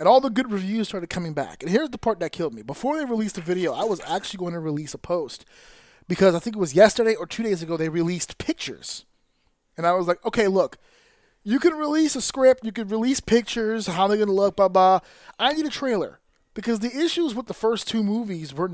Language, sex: English, male